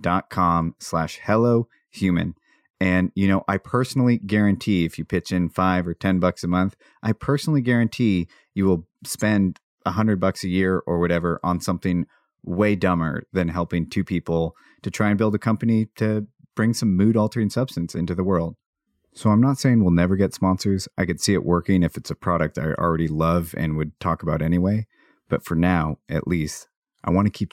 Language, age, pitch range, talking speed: English, 30-49, 85-105 Hz, 195 wpm